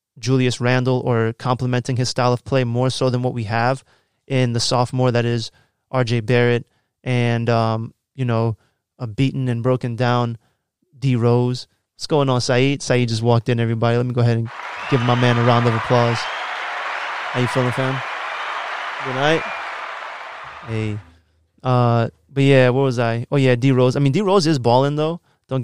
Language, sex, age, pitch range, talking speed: English, male, 20-39, 115-130 Hz, 185 wpm